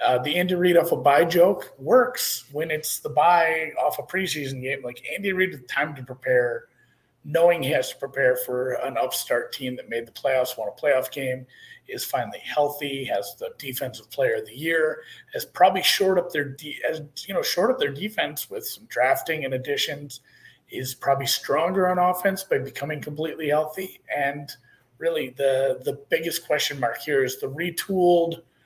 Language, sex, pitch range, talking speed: English, male, 130-195 Hz, 185 wpm